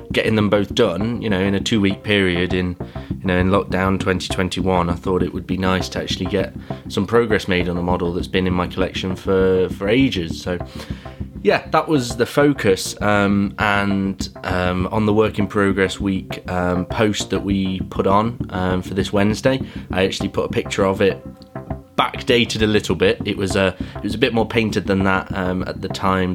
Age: 20-39